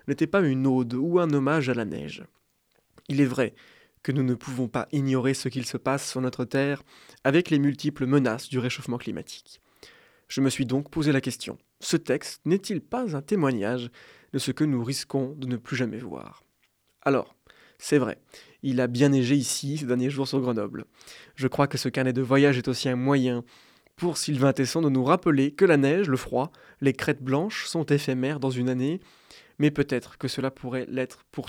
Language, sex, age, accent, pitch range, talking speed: French, male, 20-39, French, 130-145 Hz, 200 wpm